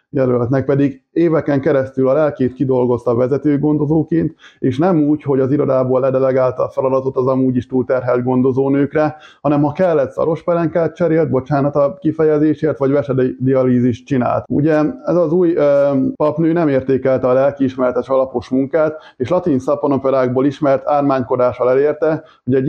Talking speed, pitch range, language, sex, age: 150 wpm, 130-150 Hz, Hungarian, male, 20-39